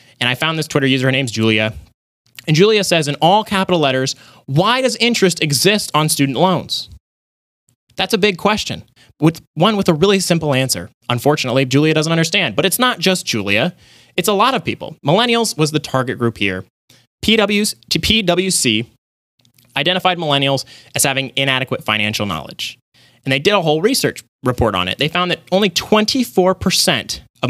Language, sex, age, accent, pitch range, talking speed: English, male, 30-49, American, 125-180 Hz, 170 wpm